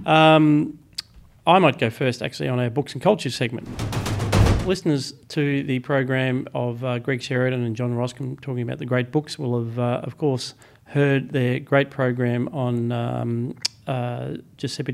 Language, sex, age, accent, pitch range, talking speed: English, male, 40-59, Australian, 120-135 Hz, 165 wpm